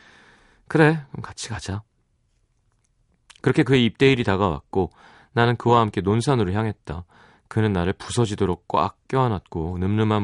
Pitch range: 90-125 Hz